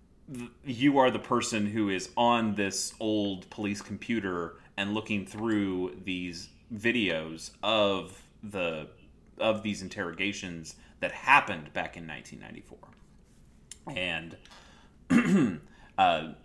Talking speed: 95 wpm